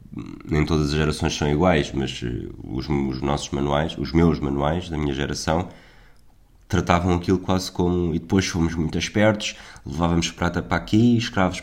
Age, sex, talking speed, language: 20-39, male, 160 wpm, Portuguese